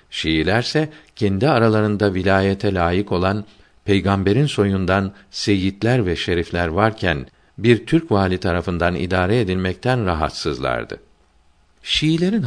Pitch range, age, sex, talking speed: 90-115 Hz, 50-69, male, 95 wpm